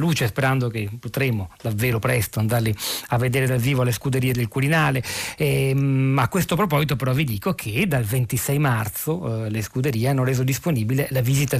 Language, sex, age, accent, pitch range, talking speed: Italian, male, 40-59, native, 120-140 Hz, 175 wpm